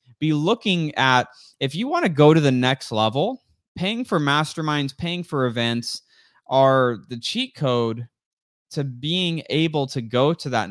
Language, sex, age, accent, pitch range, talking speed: English, male, 20-39, American, 115-145 Hz, 165 wpm